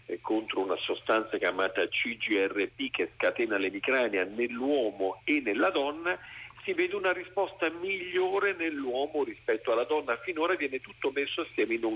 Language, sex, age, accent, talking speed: Italian, male, 50-69, native, 145 wpm